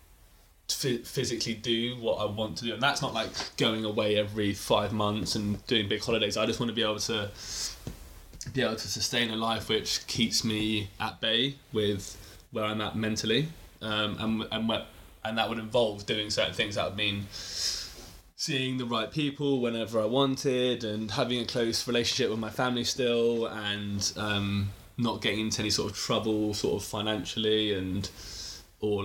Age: 20-39